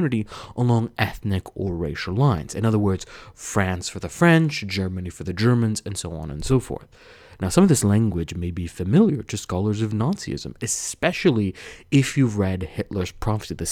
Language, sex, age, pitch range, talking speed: English, male, 30-49, 95-130 Hz, 180 wpm